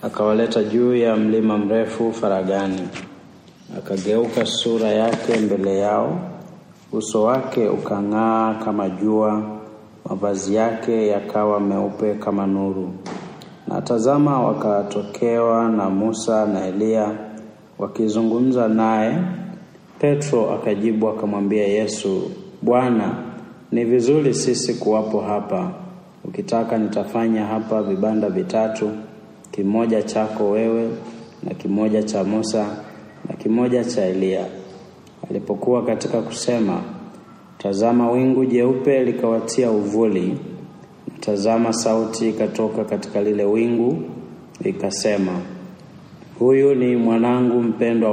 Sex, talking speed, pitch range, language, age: male, 95 wpm, 105-115 Hz, Swahili, 30-49